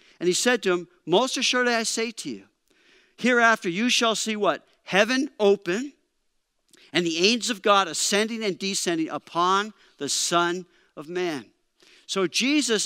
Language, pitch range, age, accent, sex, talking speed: English, 180-240 Hz, 50-69, American, male, 155 wpm